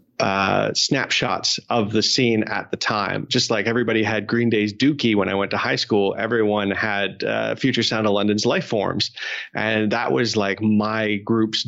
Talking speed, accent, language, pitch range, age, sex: 185 wpm, American, English, 100-115 Hz, 30-49, male